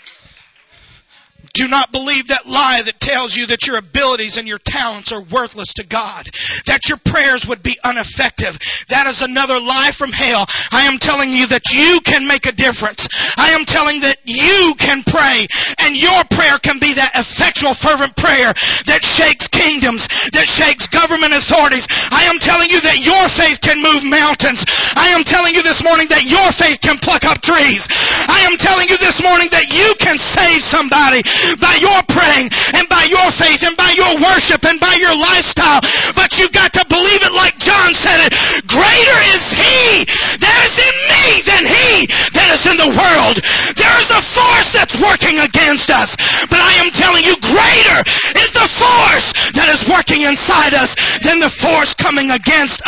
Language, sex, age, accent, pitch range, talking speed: English, male, 40-59, American, 275-360 Hz, 185 wpm